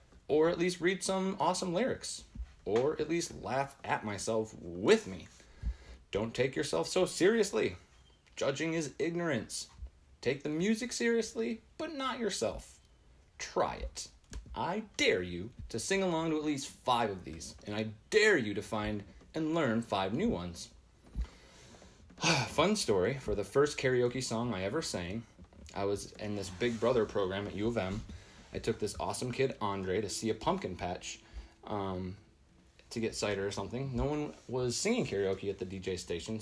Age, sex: 30-49, male